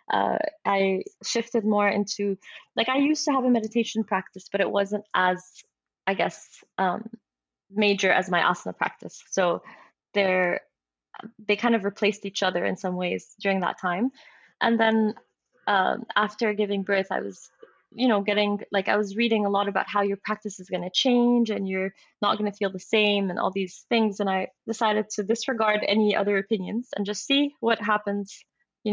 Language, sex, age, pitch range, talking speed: English, female, 20-39, 195-230 Hz, 185 wpm